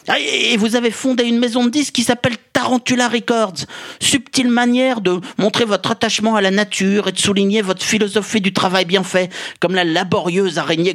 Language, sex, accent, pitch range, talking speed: French, male, French, 195-250 Hz, 185 wpm